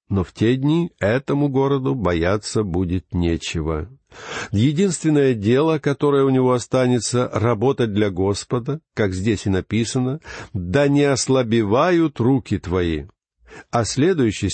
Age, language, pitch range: 50-69, Russian, 105-150 Hz